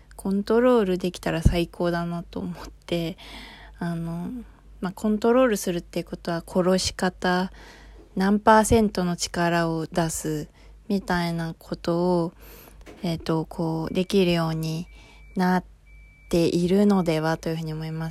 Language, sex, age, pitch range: Japanese, female, 20-39, 170-195 Hz